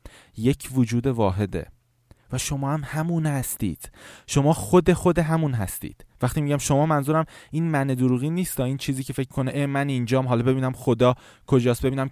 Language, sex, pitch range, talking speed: Persian, male, 125-165 Hz, 175 wpm